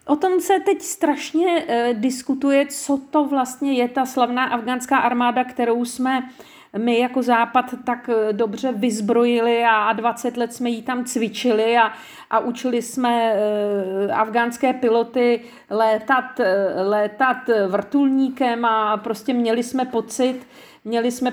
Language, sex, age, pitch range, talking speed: Czech, female, 40-59, 215-255 Hz, 125 wpm